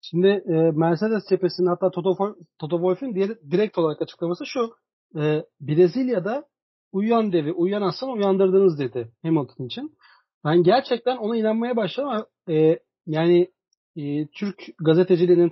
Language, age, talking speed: Turkish, 40-59, 110 wpm